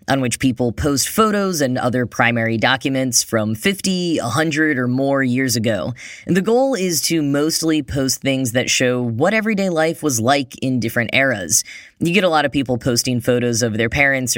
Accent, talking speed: American, 185 wpm